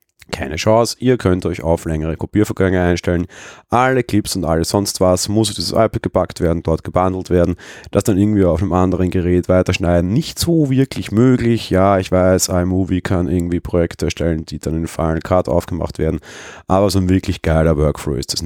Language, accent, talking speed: German, German, 195 wpm